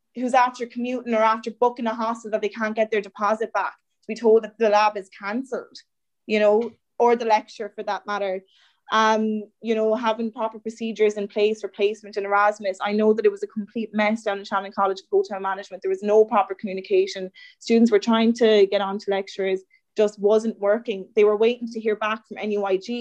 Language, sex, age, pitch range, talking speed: English, female, 20-39, 200-230 Hz, 210 wpm